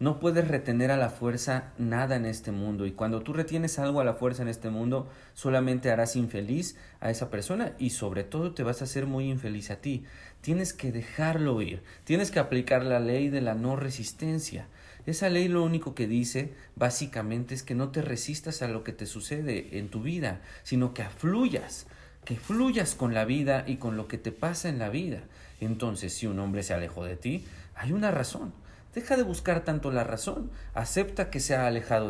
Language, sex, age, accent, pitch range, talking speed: Spanish, male, 40-59, Mexican, 110-145 Hz, 205 wpm